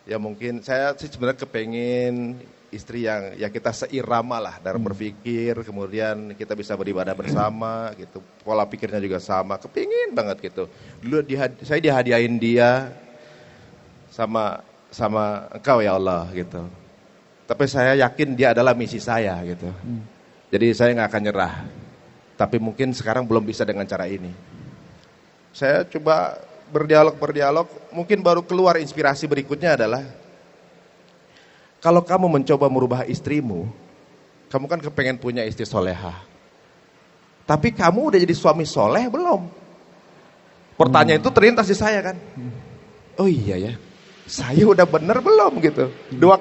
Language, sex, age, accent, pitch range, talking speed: Indonesian, male, 30-49, native, 110-150 Hz, 130 wpm